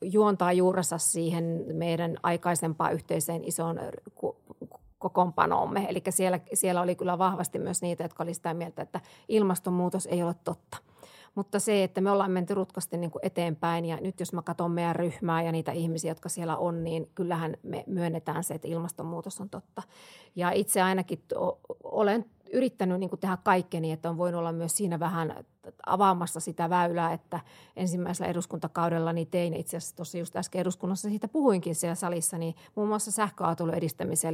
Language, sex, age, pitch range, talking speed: Finnish, female, 30-49, 165-185 Hz, 165 wpm